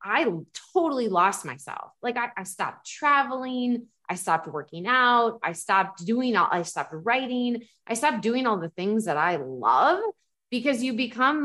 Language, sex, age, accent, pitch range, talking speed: English, female, 30-49, American, 170-235 Hz, 170 wpm